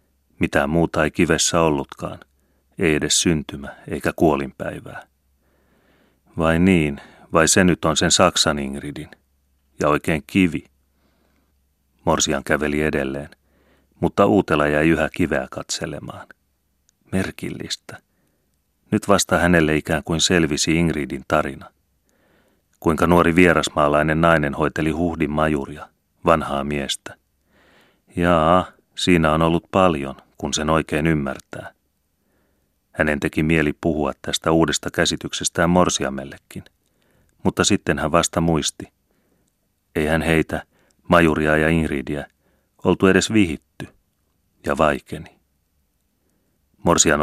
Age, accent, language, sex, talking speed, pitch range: 30-49, native, Finnish, male, 105 wpm, 70-85 Hz